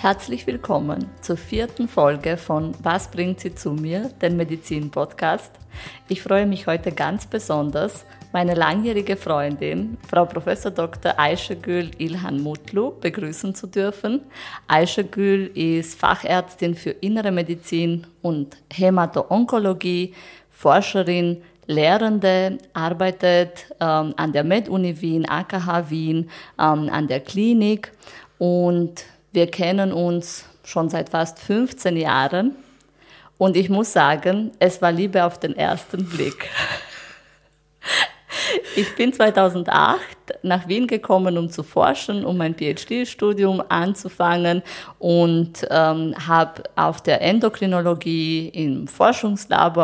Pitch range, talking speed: 165-195 Hz, 115 wpm